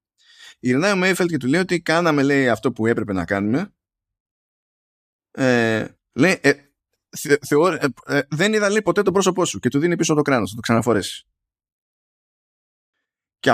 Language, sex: Greek, male